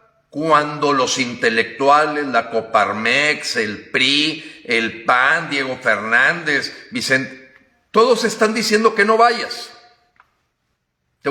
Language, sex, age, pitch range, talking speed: Spanish, male, 50-69, 140-225 Hz, 100 wpm